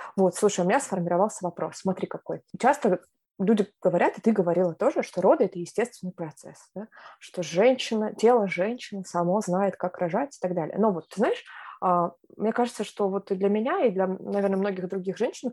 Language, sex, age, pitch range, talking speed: Russian, female, 20-39, 180-220 Hz, 180 wpm